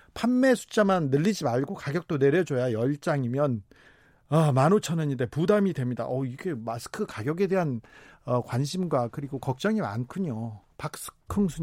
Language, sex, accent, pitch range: Korean, male, native, 125-185 Hz